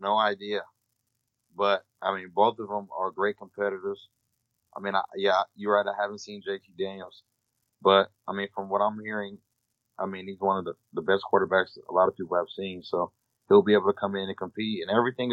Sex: male